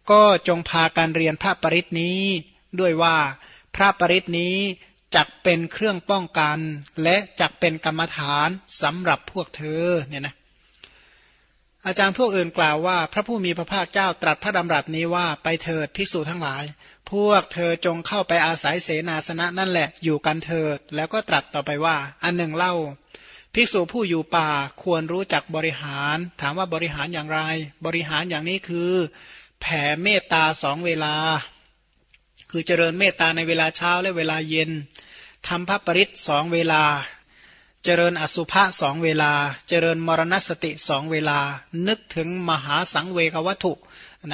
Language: Thai